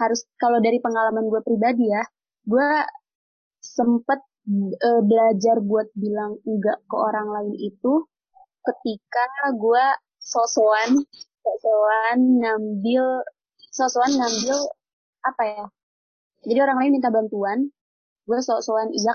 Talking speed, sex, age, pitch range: 105 wpm, female, 20-39, 220-265 Hz